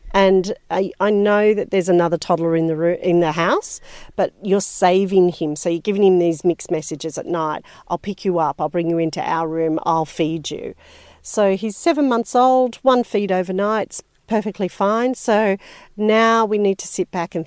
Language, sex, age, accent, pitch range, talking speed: English, female, 40-59, Australian, 165-205 Hz, 190 wpm